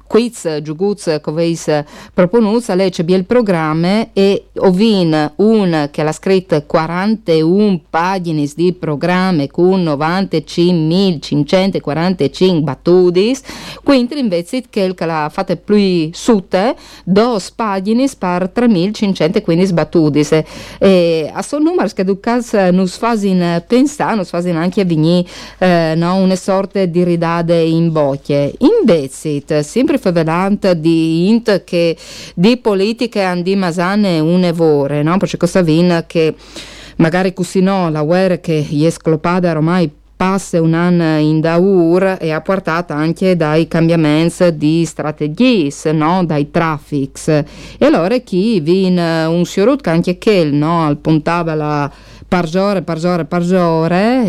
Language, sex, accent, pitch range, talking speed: Italian, female, native, 160-195 Hz, 120 wpm